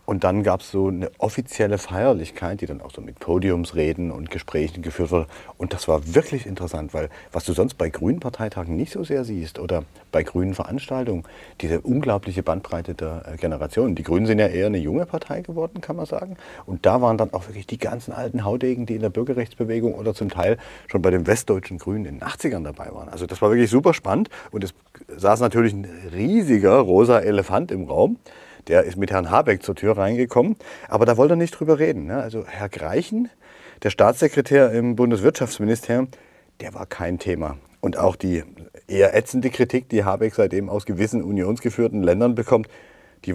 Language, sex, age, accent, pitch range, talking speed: German, male, 40-59, German, 90-120 Hz, 190 wpm